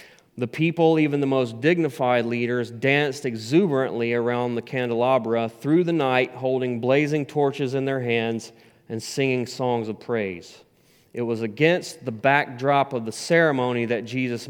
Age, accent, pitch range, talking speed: 30-49, American, 120-140 Hz, 150 wpm